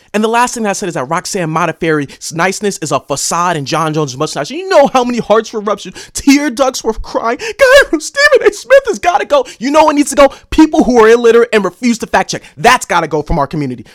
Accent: American